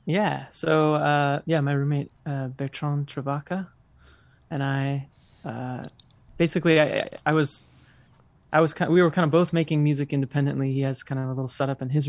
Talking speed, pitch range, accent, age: 185 wpm, 135-155 Hz, American, 20-39